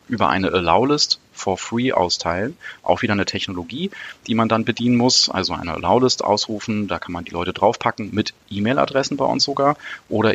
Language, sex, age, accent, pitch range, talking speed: German, male, 30-49, German, 95-115 Hz, 180 wpm